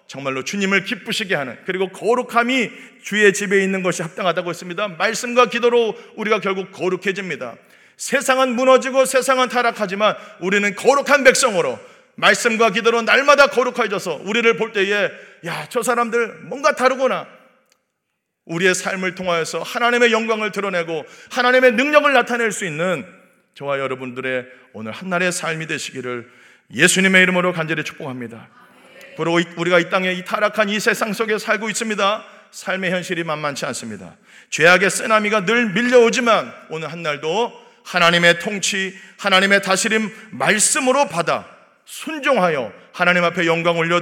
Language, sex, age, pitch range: Korean, male, 40-59, 175-235 Hz